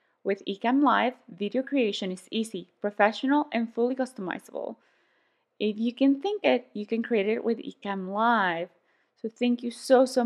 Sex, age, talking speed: female, 20-39, 165 wpm